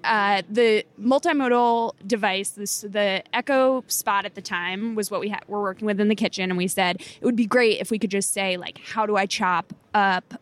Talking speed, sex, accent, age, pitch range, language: 215 wpm, female, American, 20-39, 195-245 Hz, English